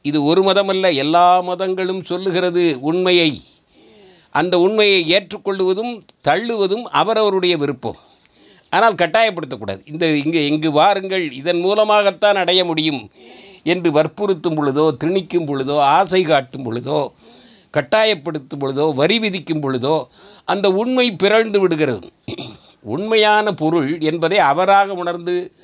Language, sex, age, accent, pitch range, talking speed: Tamil, male, 50-69, native, 155-200 Hz, 105 wpm